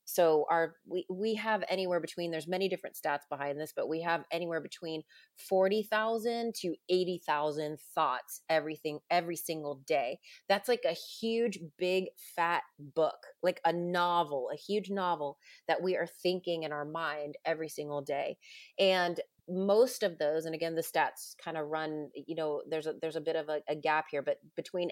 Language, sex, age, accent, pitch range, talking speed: English, female, 30-49, American, 155-190 Hz, 185 wpm